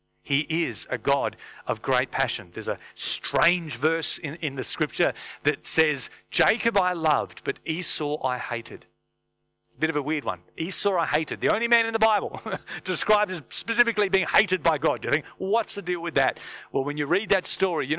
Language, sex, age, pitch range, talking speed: English, male, 40-59, 120-165 Hz, 195 wpm